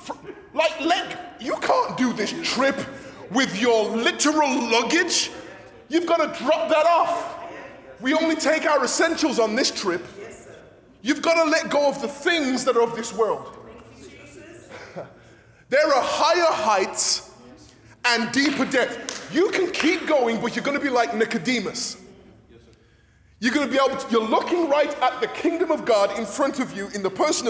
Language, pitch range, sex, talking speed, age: English, 220-310 Hz, male, 170 wpm, 20-39